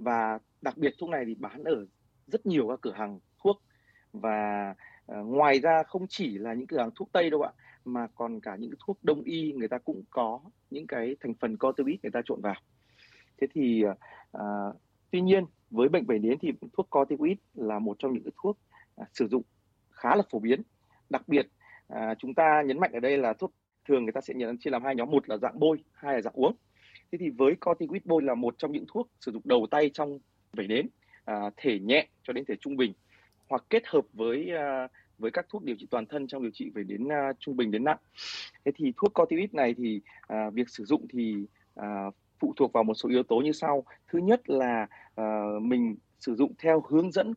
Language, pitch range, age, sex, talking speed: Vietnamese, 110-160 Hz, 30-49, male, 220 wpm